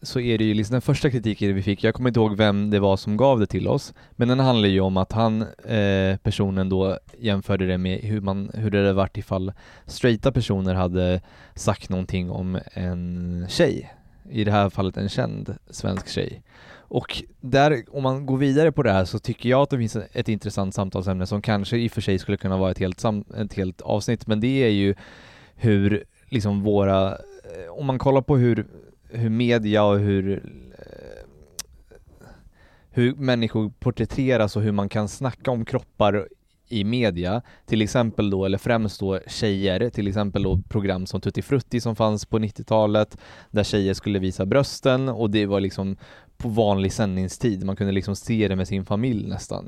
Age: 20-39